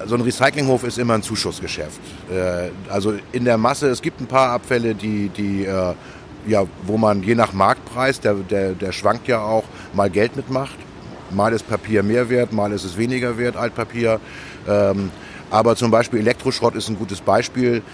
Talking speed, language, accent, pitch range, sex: 160 wpm, German, German, 95-115 Hz, male